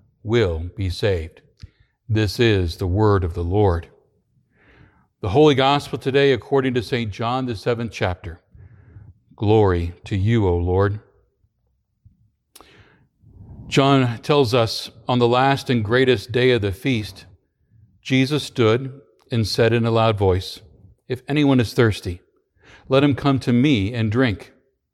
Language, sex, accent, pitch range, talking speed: English, male, American, 95-125 Hz, 135 wpm